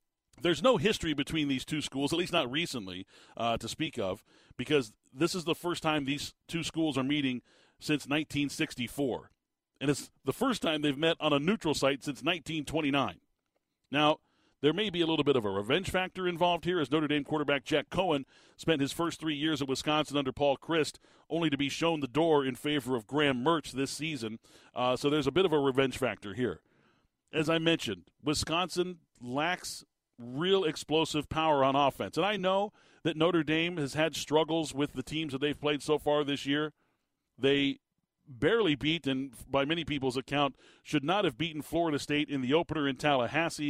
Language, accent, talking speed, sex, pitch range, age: English, American, 195 wpm, male, 135-160 Hz, 40-59